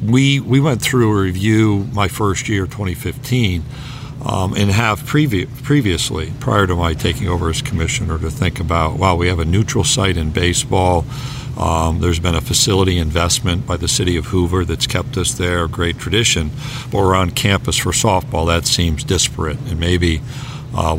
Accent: American